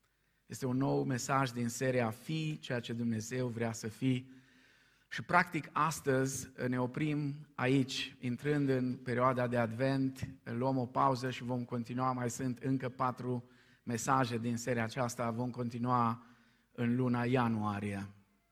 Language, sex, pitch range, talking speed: Romanian, male, 115-135 Hz, 140 wpm